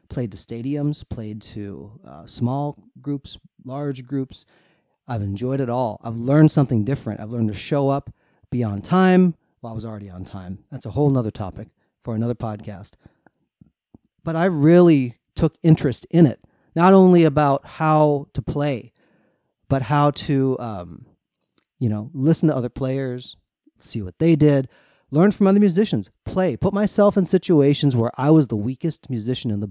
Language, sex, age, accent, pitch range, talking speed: English, male, 30-49, American, 115-155 Hz, 170 wpm